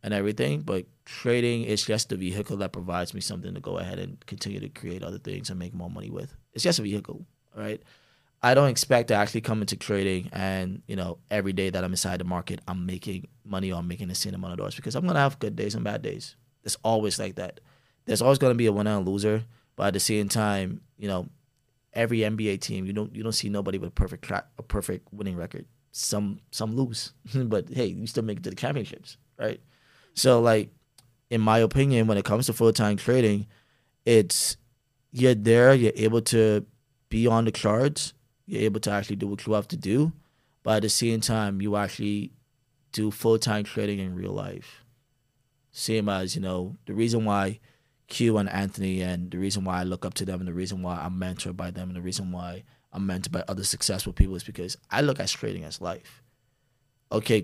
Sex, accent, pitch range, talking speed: male, American, 95-125 Hz, 220 wpm